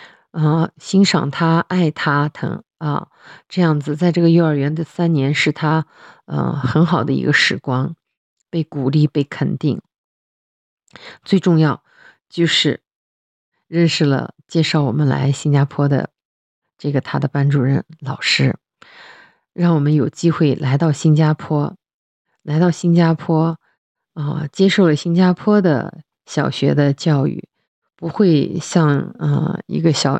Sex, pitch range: female, 145-175 Hz